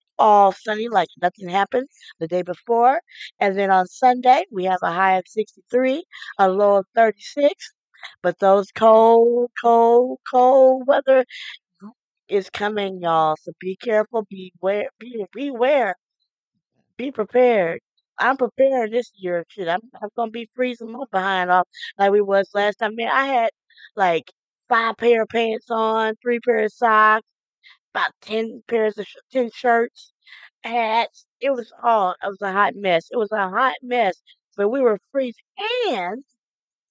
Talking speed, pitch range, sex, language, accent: 160 wpm, 200-250 Hz, female, English, American